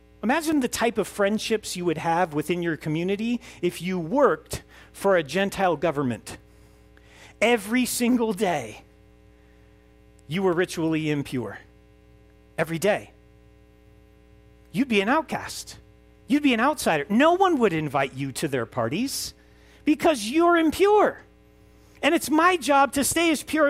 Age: 40-59